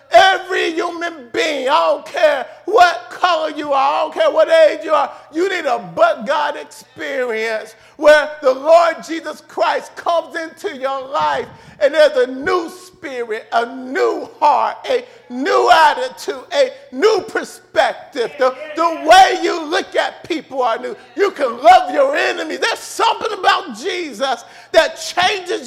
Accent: American